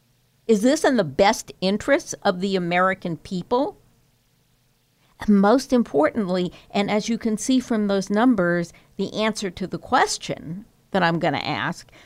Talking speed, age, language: 150 wpm, 50-69, English